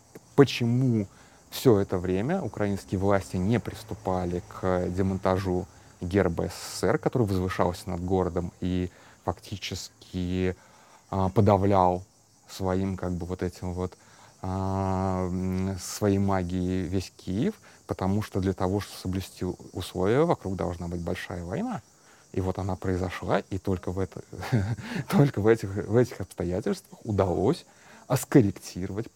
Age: 30-49